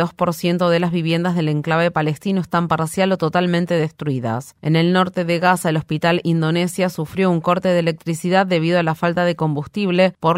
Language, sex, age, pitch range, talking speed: Spanish, female, 30-49, 160-185 Hz, 190 wpm